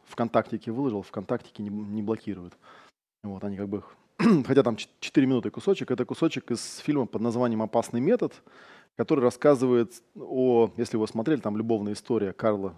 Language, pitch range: Russian, 105-135 Hz